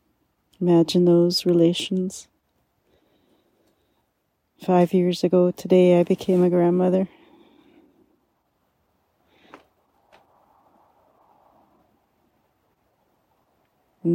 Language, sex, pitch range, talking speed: English, female, 165-185 Hz, 50 wpm